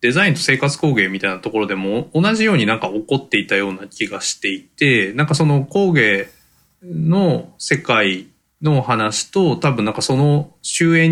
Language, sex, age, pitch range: Japanese, male, 20-39, 105-160 Hz